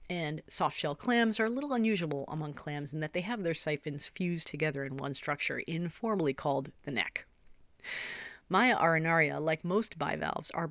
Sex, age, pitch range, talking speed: female, 40-59, 150-205 Hz, 170 wpm